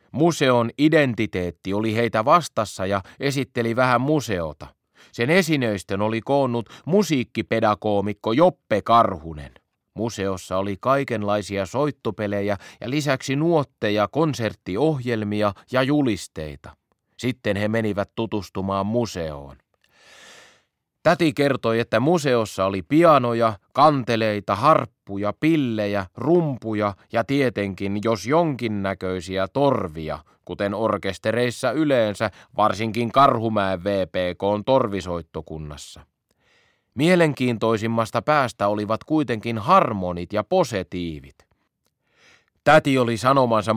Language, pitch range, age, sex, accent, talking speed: Finnish, 100-130 Hz, 30-49, male, native, 90 wpm